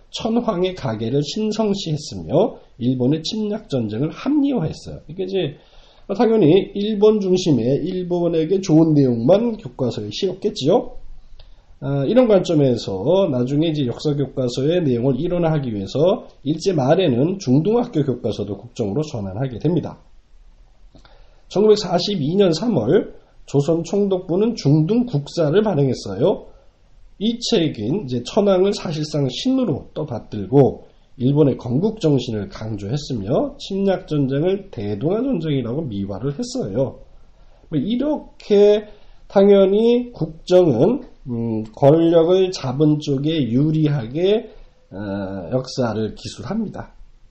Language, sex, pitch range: Korean, male, 125-200 Hz